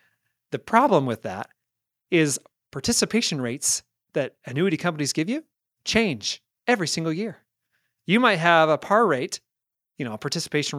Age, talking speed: 30-49, 145 wpm